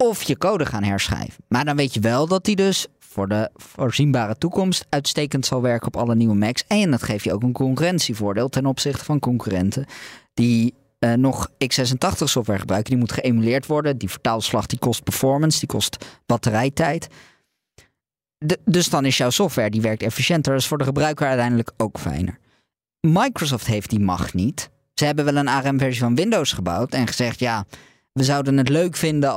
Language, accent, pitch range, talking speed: Dutch, Dutch, 115-150 Hz, 180 wpm